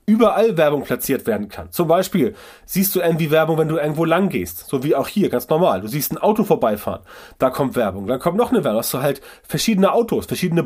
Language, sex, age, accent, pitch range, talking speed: German, male, 30-49, German, 135-180 Hz, 235 wpm